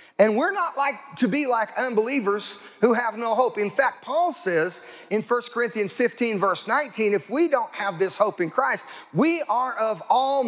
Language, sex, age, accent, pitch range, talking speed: English, male, 40-59, American, 200-265 Hz, 195 wpm